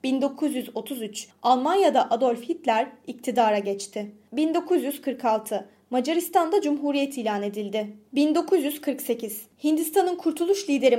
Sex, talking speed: female, 80 wpm